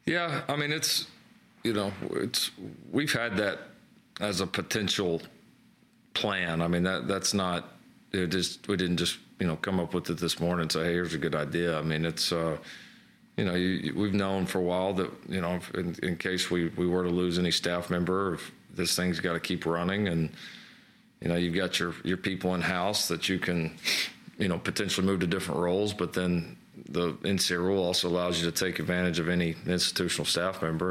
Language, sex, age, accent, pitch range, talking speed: English, male, 40-59, American, 85-95 Hz, 210 wpm